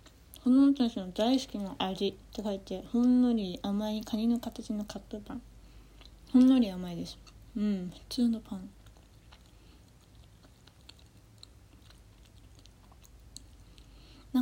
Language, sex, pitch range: Japanese, female, 180-250 Hz